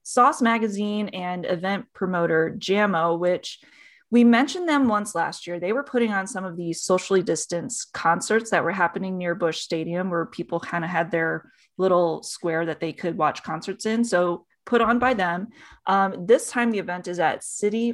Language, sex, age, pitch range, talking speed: English, female, 20-39, 175-230 Hz, 185 wpm